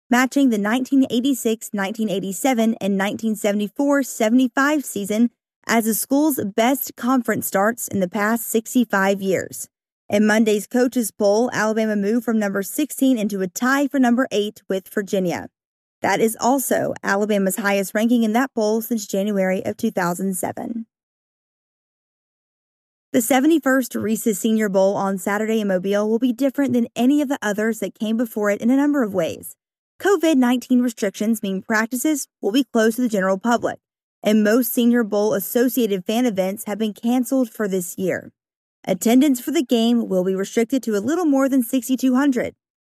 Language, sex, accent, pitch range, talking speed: English, female, American, 205-255 Hz, 155 wpm